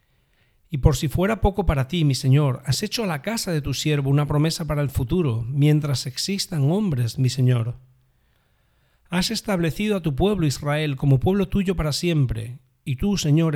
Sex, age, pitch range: male, 40-59, 130-165 Hz